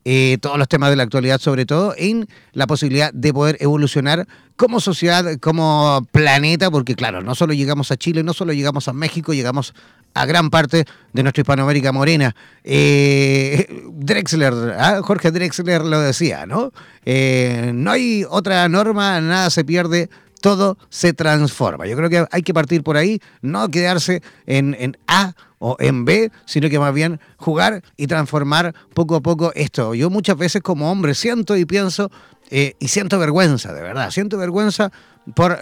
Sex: male